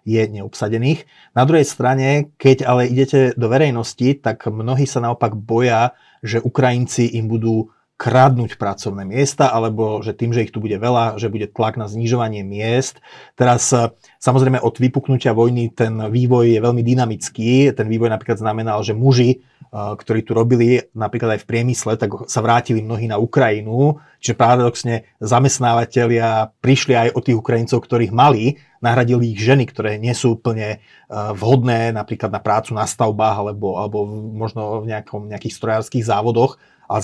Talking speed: 160 wpm